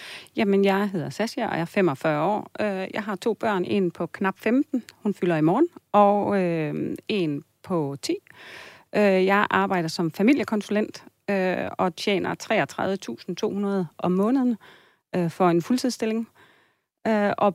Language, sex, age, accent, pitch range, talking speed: Danish, female, 30-49, native, 180-210 Hz, 130 wpm